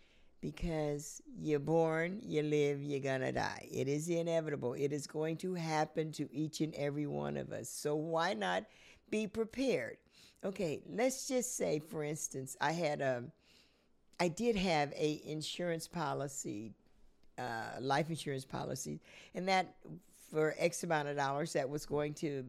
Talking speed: 155 wpm